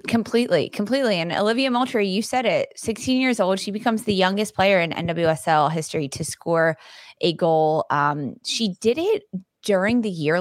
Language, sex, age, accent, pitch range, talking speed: English, female, 20-39, American, 155-195 Hz, 175 wpm